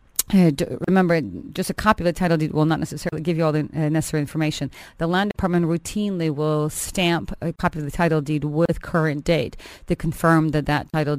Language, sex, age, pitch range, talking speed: English, female, 30-49, 155-180 Hz, 215 wpm